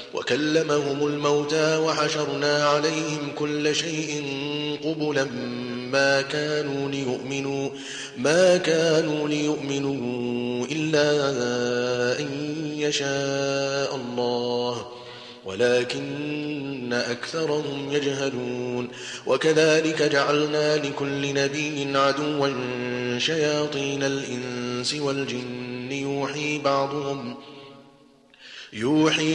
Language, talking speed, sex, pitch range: Arabic, 65 wpm, male, 125-150 Hz